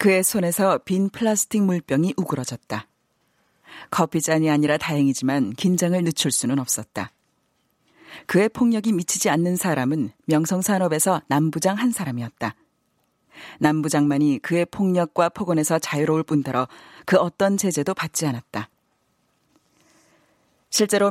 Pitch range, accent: 150-190 Hz, native